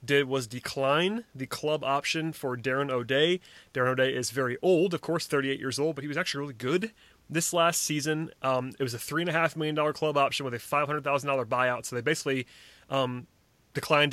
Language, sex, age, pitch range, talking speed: English, male, 30-49, 135-160 Hz, 210 wpm